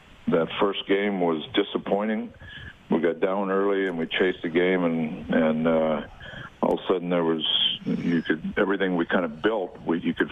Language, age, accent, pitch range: English, 60-79, American, 85-105 Hz